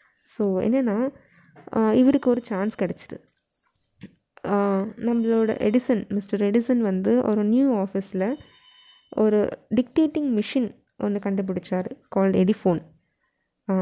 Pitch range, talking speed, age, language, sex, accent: 205-250 Hz, 90 wpm, 20-39, Tamil, female, native